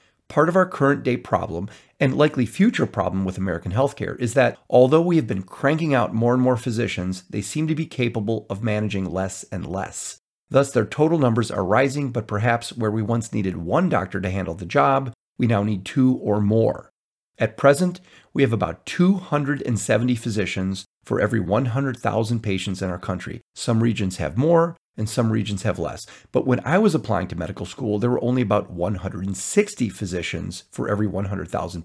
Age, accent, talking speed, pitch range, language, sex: 40-59, American, 185 wpm, 105-135 Hz, English, male